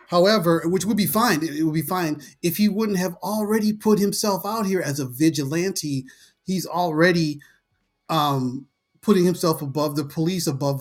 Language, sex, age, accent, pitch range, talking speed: English, male, 30-49, American, 140-185 Hz, 165 wpm